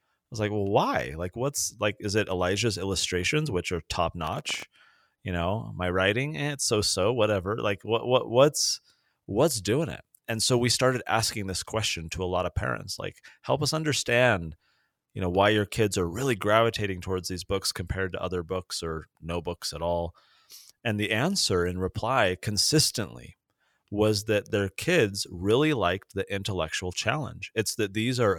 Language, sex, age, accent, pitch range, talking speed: English, male, 30-49, American, 90-120 Hz, 180 wpm